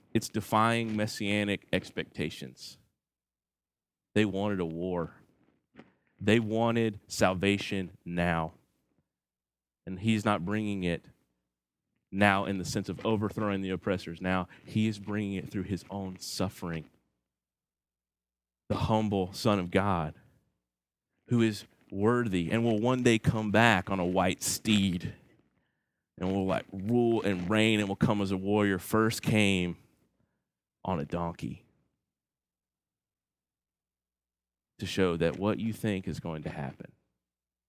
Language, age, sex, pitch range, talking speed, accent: English, 30-49, male, 90-125 Hz, 125 wpm, American